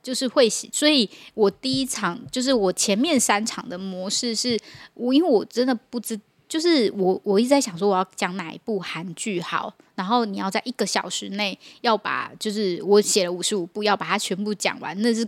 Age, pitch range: 10-29, 190-230 Hz